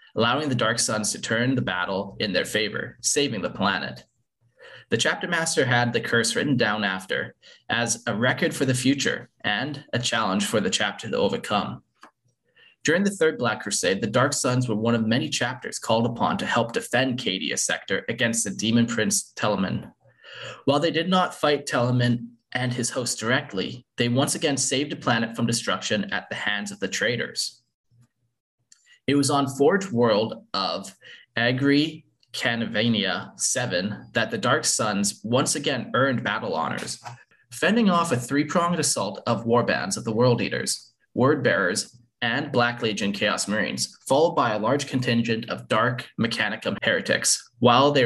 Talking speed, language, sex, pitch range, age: 165 wpm, English, male, 115-140 Hz, 20-39